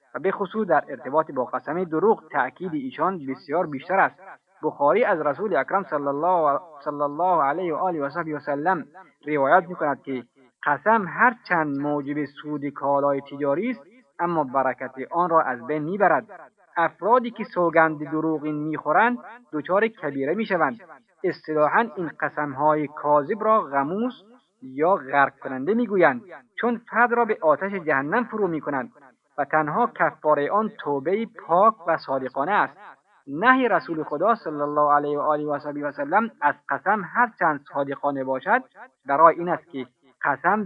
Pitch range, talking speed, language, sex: 145-205 Hz, 145 wpm, Persian, male